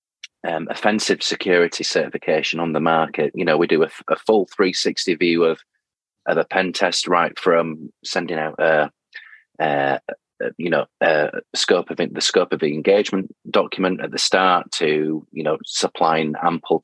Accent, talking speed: British, 180 wpm